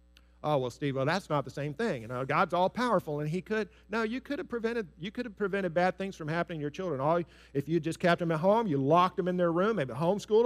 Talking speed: 280 wpm